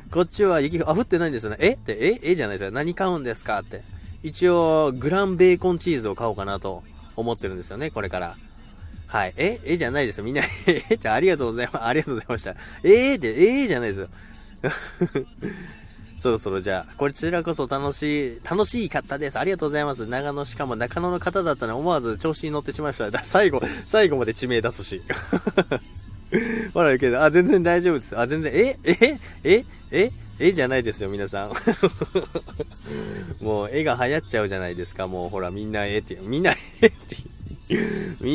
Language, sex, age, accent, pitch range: Japanese, male, 20-39, native, 100-160 Hz